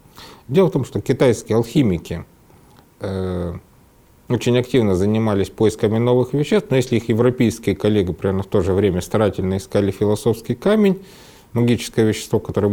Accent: native